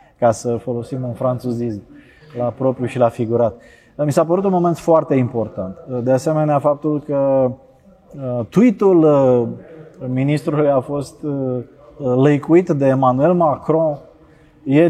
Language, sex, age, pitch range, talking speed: Romanian, male, 20-39, 125-150 Hz, 120 wpm